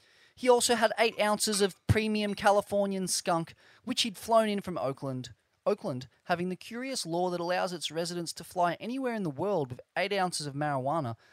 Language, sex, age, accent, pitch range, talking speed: English, male, 20-39, Australian, 140-215 Hz, 185 wpm